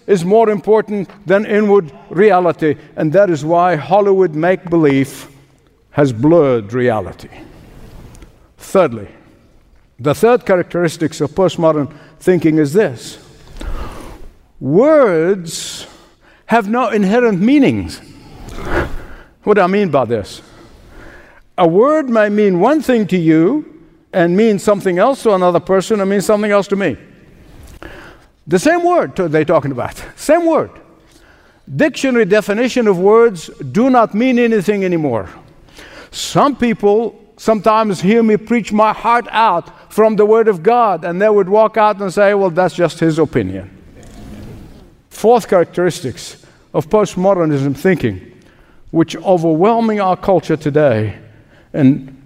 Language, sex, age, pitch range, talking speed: English, male, 60-79, 155-215 Hz, 125 wpm